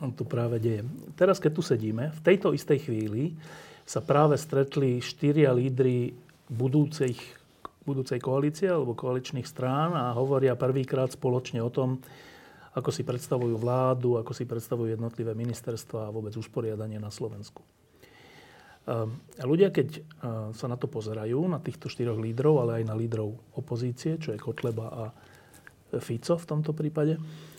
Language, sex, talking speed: Slovak, male, 145 wpm